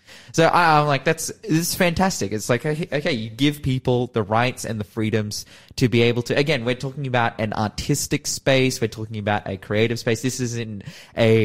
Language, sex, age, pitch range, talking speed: English, male, 20-39, 105-135 Hz, 200 wpm